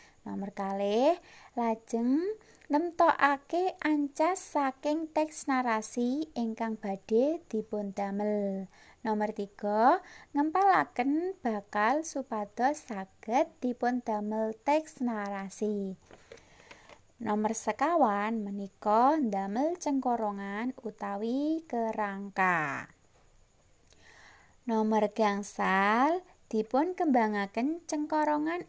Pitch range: 215-300 Hz